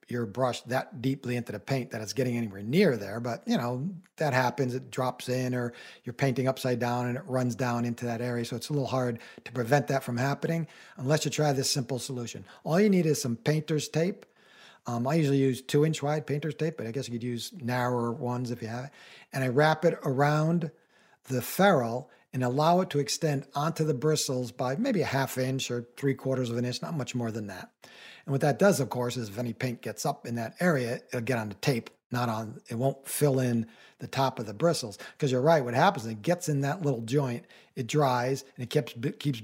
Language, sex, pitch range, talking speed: English, male, 120-145 Hz, 240 wpm